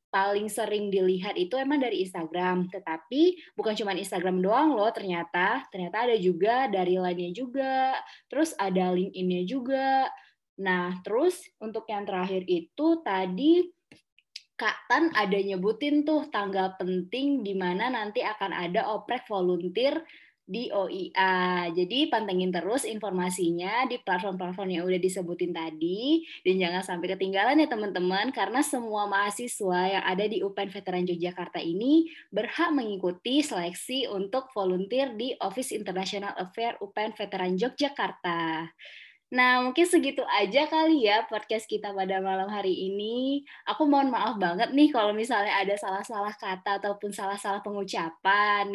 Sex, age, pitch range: female, 20-39, 185-265 Hz